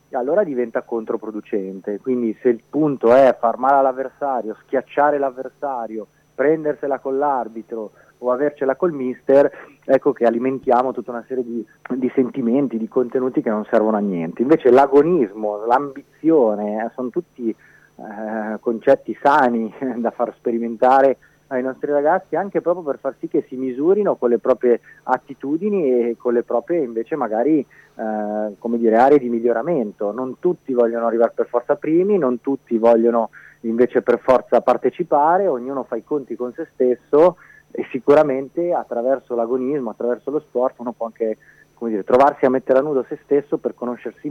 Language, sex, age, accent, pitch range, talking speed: Italian, male, 30-49, native, 115-135 Hz, 160 wpm